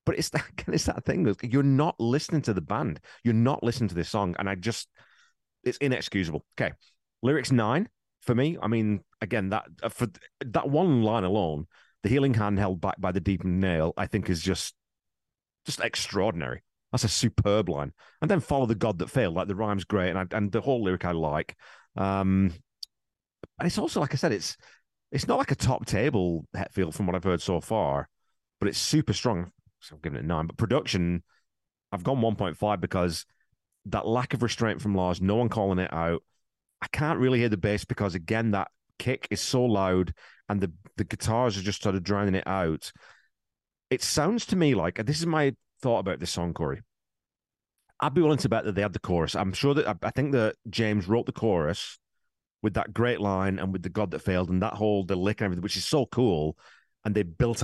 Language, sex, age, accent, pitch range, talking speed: English, male, 30-49, British, 95-115 Hz, 210 wpm